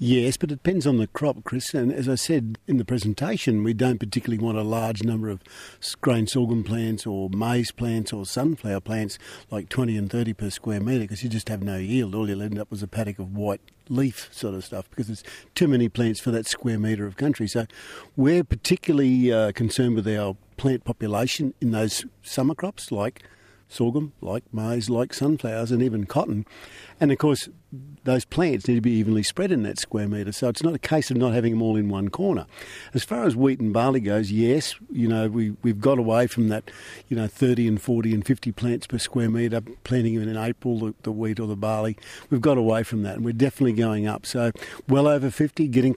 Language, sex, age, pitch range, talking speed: English, male, 50-69, 110-130 Hz, 220 wpm